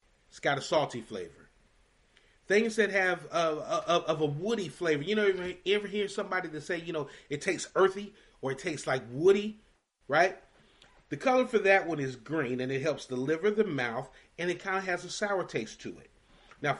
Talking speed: 205 wpm